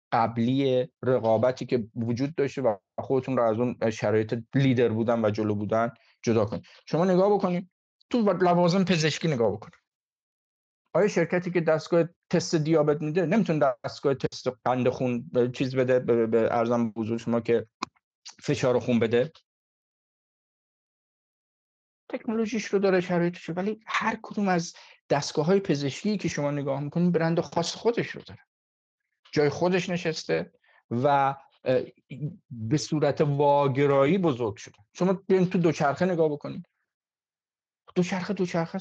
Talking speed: 135 wpm